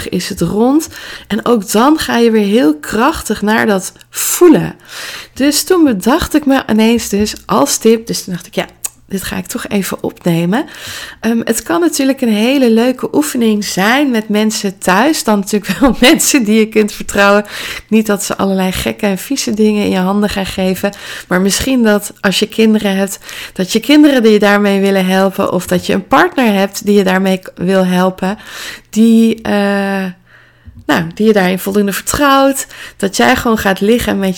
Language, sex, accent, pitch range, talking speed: Dutch, female, Dutch, 195-245 Hz, 185 wpm